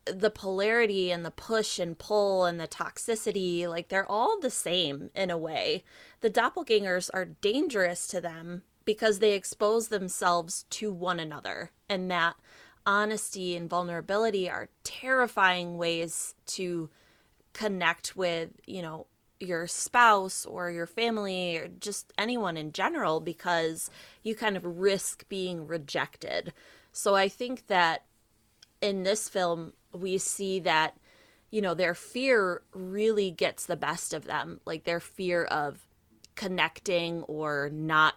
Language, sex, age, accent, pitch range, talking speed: English, female, 20-39, American, 165-200 Hz, 140 wpm